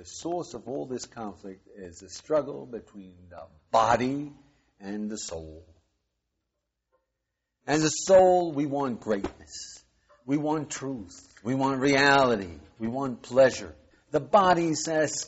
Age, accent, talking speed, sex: 60-79, American, 130 wpm, male